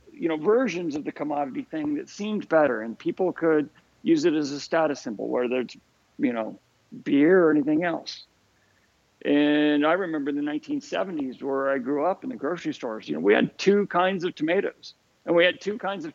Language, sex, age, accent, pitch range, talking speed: English, male, 50-69, American, 145-235 Hz, 205 wpm